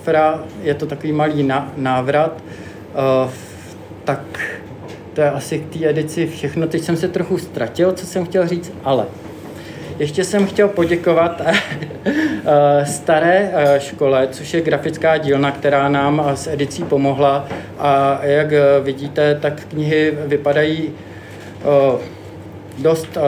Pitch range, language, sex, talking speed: 135-155 Hz, Czech, male, 115 wpm